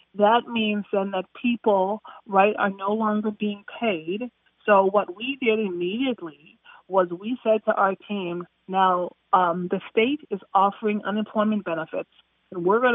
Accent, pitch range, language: American, 195-225 Hz, English